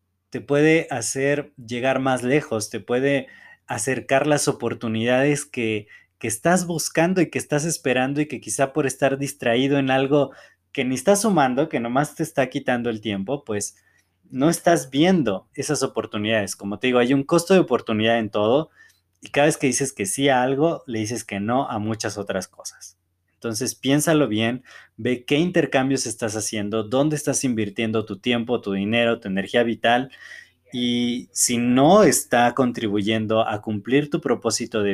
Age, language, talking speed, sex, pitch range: 20-39, Spanish, 170 wpm, male, 110-140 Hz